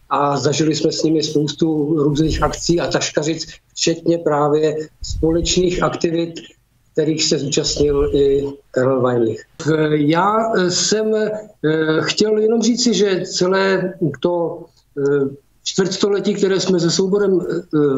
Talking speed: 110 wpm